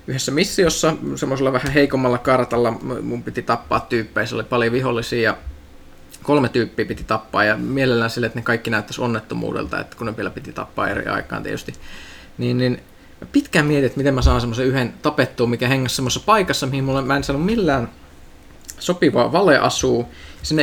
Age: 20-39